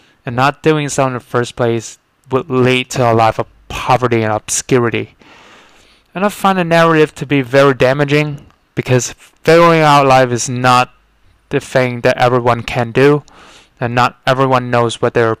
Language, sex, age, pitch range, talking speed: English, male, 20-39, 120-145 Hz, 170 wpm